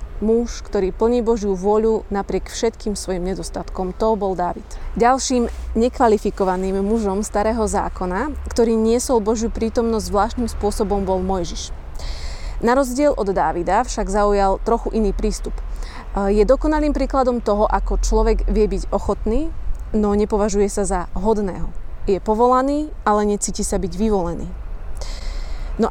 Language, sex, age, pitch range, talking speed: Slovak, female, 20-39, 200-240 Hz, 130 wpm